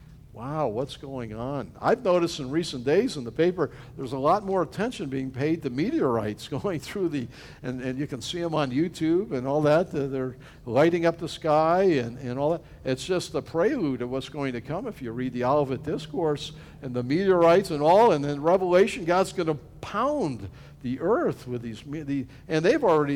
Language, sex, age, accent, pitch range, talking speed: English, male, 50-69, American, 140-185 Hz, 205 wpm